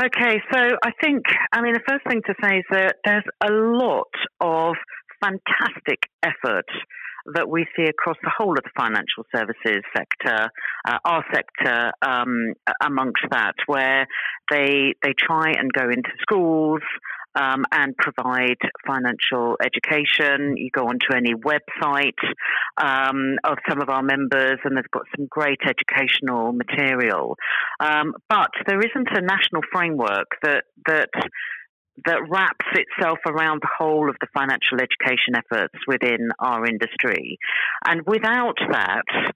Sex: female